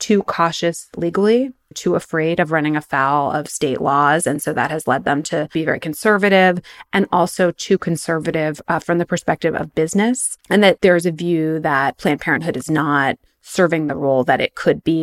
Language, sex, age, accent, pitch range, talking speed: English, female, 20-39, American, 165-225 Hz, 190 wpm